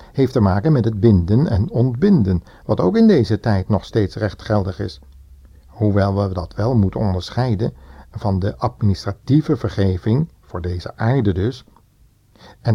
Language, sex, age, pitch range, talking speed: Dutch, male, 60-79, 95-120 Hz, 155 wpm